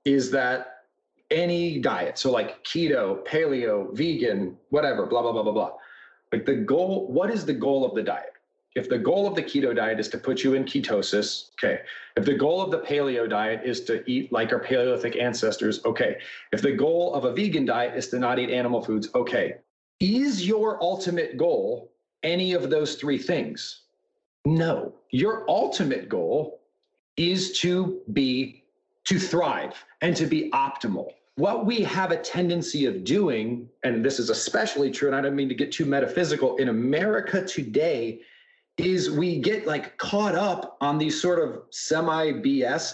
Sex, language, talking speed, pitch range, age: male, English, 175 wpm, 140-220 Hz, 40-59